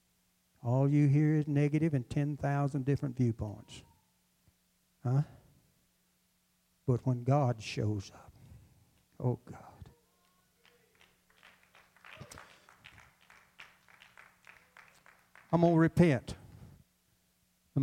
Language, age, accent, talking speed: English, 60-79, American, 75 wpm